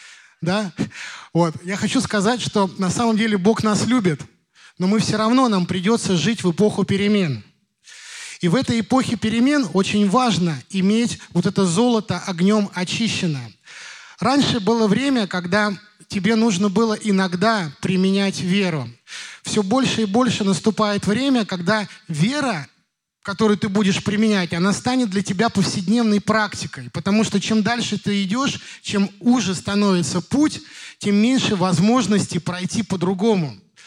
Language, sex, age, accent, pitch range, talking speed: Russian, male, 20-39, native, 185-230 Hz, 140 wpm